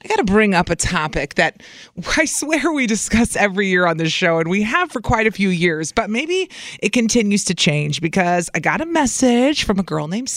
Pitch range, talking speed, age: 165-230 Hz, 230 wpm, 30-49